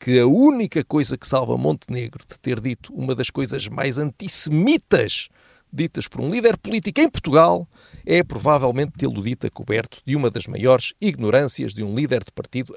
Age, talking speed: 50-69, 175 wpm